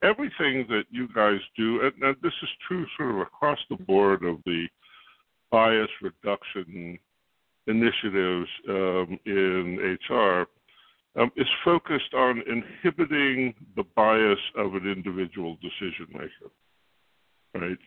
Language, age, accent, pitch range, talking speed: English, 60-79, American, 95-125 Hz, 120 wpm